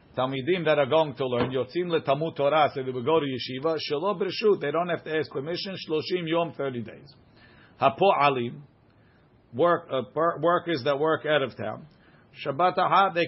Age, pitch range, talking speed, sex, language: 50-69, 135-155 Hz, 185 wpm, male, English